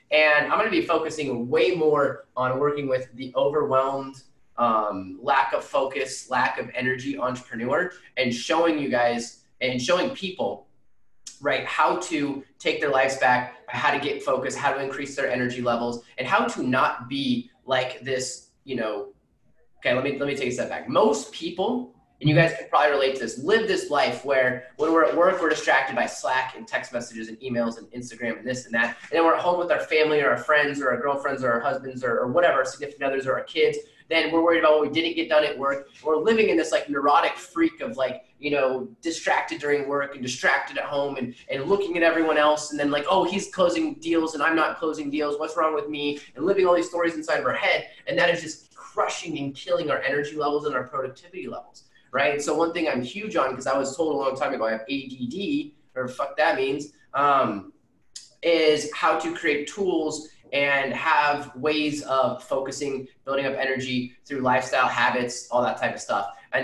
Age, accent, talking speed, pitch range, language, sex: 20-39, American, 215 wpm, 130-160 Hz, English, male